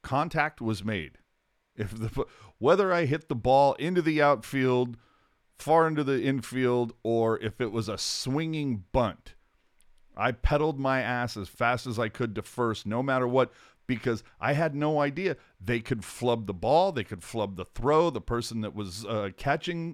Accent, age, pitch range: American, 40-59, 105-130 Hz